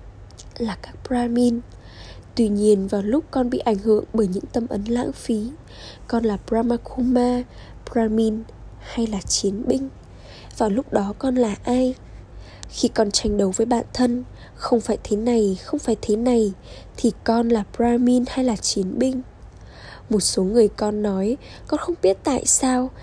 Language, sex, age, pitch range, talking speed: Vietnamese, female, 10-29, 210-255 Hz, 165 wpm